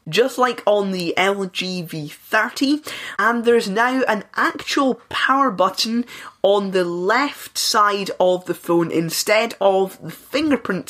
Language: English